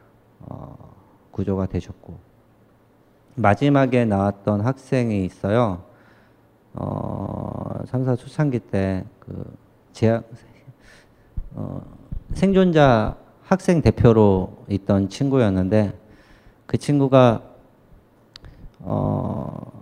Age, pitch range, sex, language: 40-59, 95-125 Hz, male, Korean